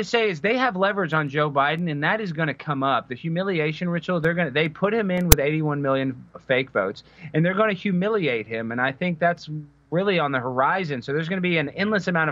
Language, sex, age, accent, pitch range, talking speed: English, male, 30-49, American, 145-205 Hz, 255 wpm